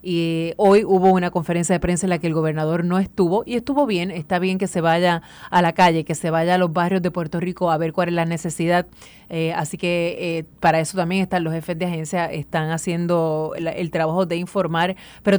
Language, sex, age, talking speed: Spanish, female, 30-49, 230 wpm